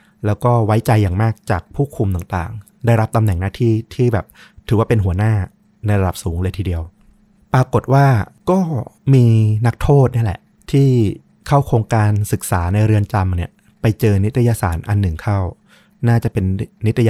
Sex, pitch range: male, 100-130 Hz